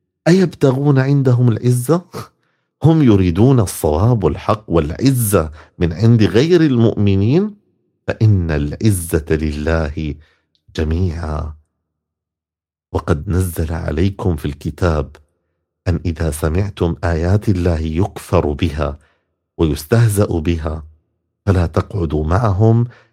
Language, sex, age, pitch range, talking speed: Arabic, male, 50-69, 80-105 Hz, 85 wpm